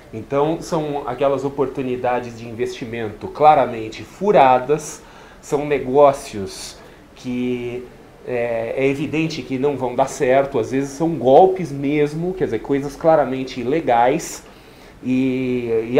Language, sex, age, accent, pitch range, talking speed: Portuguese, male, 30-49, Brazilian, 125-155 Hz, 115 wpm